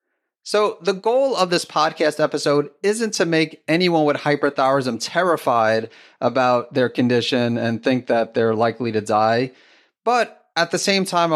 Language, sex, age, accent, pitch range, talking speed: English, male, 30-49, American, 125-150 Hz, 155 wpm